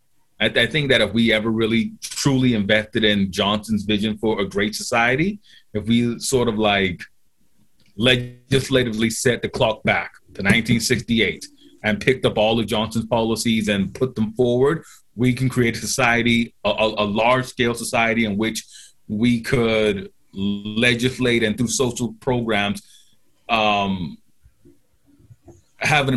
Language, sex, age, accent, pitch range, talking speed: English, male, 30-49, American, 110-130 Hz, 140 wpm